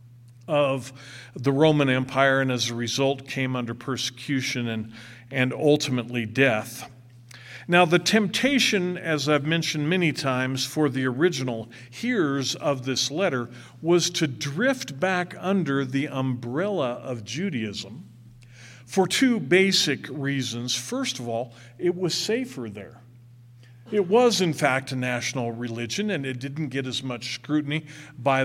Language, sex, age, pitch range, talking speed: English, male, 50-69, 120-165 Hz, 135 wpm